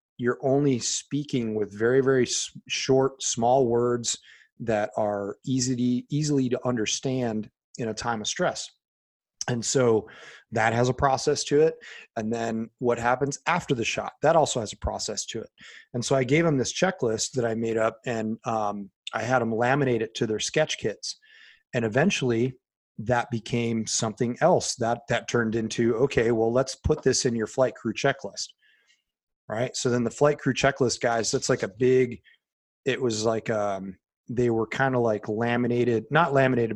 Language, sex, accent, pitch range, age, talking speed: English, male, American, 110-135 Hz, 30-49, 180 wpm